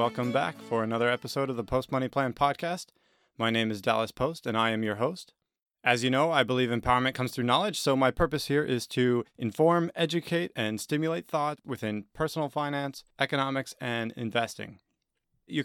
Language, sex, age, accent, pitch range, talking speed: English, male, 30-49, American, 120-145 Hz, 185 wpm